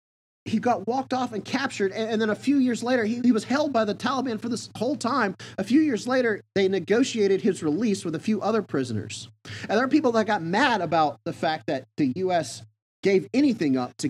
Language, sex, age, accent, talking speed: English, male, 30-49, American, 225 wpm